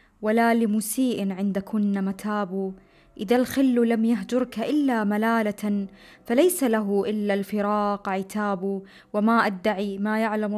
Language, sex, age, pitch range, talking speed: Arabic, female, 20-39, 210-235 Hz, 115 wpm